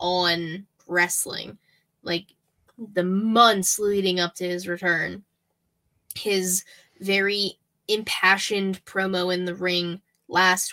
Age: 10-29